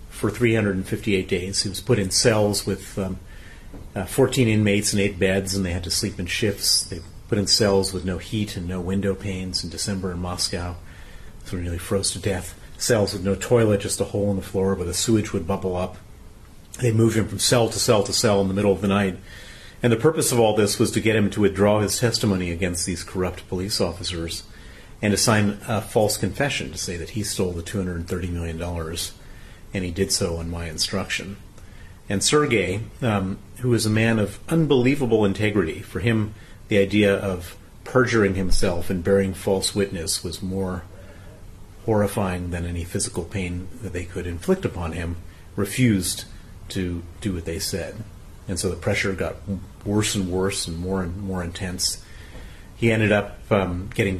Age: 40-59